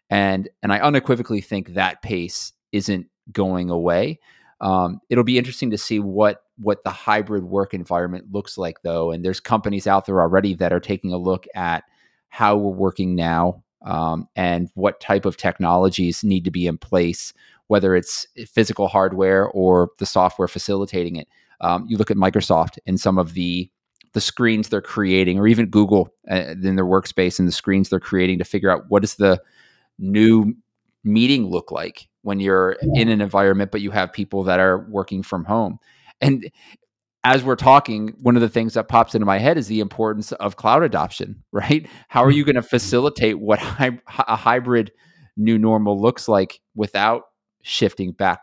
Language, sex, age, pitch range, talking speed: English, male, 30-49, 95-110 Hz, 180 wpm